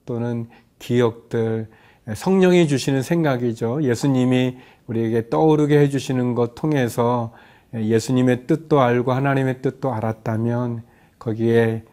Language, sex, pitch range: Korean, male, 115-135 Hz